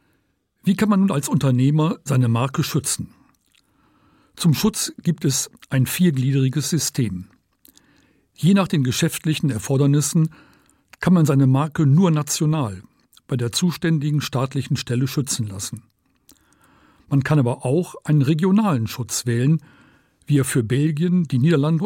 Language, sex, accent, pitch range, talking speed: German, male, German, 130-165 Hz, 130 wpm